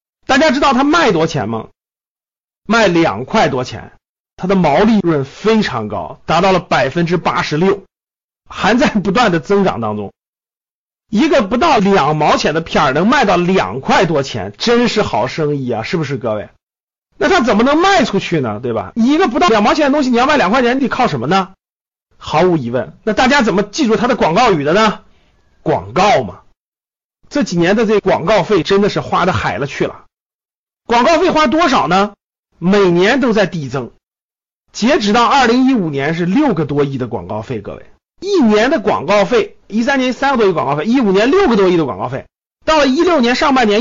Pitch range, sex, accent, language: 165-255 Hz, male, native, Chinese